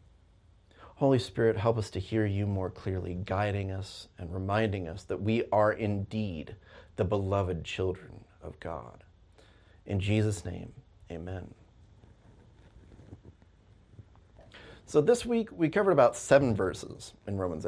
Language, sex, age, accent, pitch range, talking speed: English, male, 30-49, American, 95-110 Hz, 125 wpm